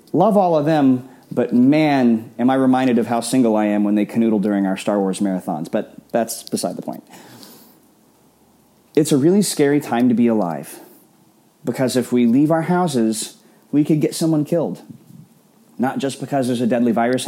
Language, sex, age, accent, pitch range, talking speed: English, male, 30-49, American, 120-155 Hz, 185 wpm